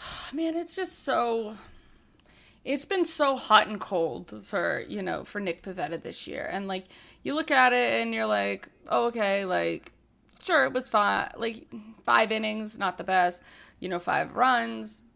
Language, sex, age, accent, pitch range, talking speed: English, female, 30-49, American, 195-255 Hz, 175 wpm